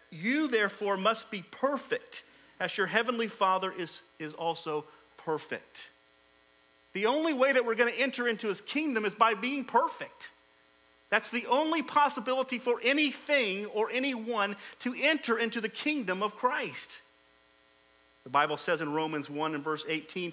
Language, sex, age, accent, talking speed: English, male, 40-59, American, 155 wpm